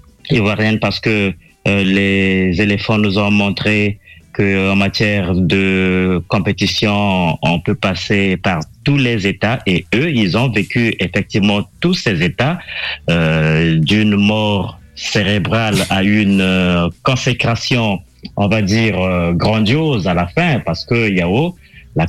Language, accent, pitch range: French, French, 95-125 Hz